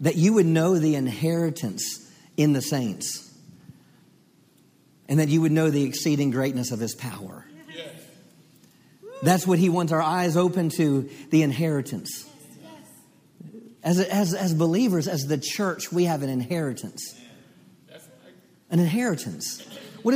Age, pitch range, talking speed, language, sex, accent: 50-69, 160-190 Hz, 130 wpm, English, male, American